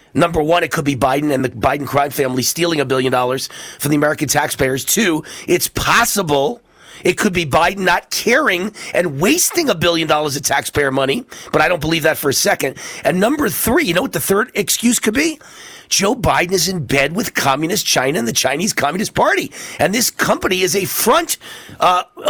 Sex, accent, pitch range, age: male, American, 160-225 Hz, 40-59